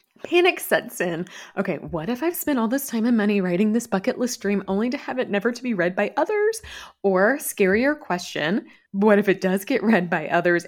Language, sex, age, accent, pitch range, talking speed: English, female, 20-39, American, 185-255 Hz, 220 wpm